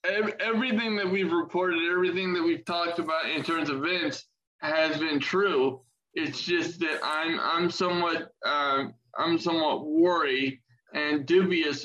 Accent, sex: American, male